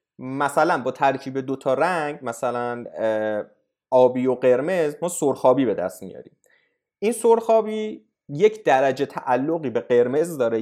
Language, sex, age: Persian, male, 30-49